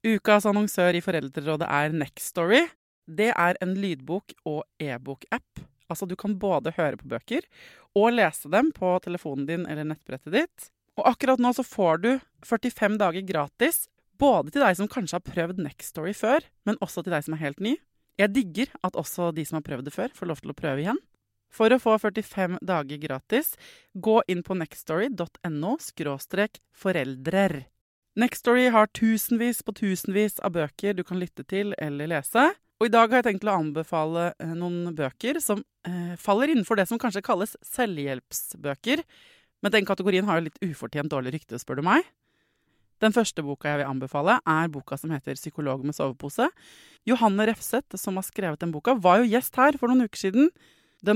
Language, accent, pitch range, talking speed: English, Swedish, 160-225 Hz, 185 wpm